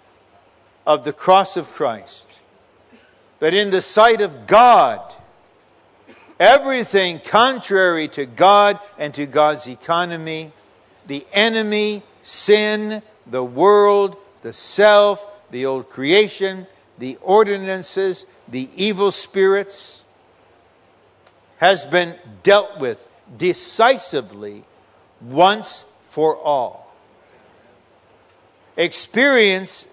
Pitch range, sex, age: 155-210 Hz, male, 60-79